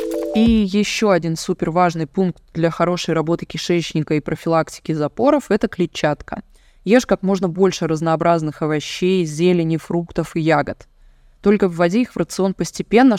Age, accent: 20-39, native